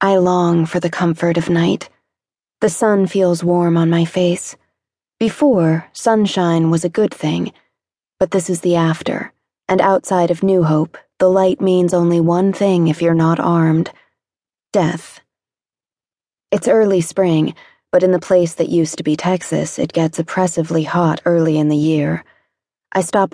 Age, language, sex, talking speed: 20-39, English, female, 160 wpm